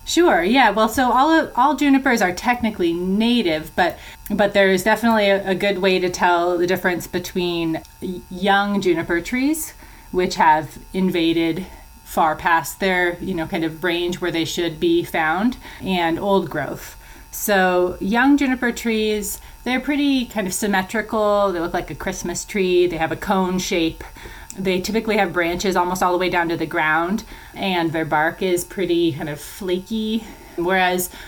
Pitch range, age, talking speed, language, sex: 165-200 Hz, 30-49, 165 wpm, English, female